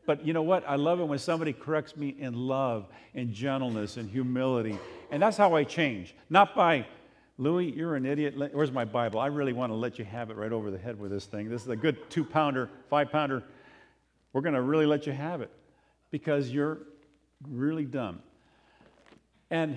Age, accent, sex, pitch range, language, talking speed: 50-69, American, male, 115-150 Hz, English, 195 wpm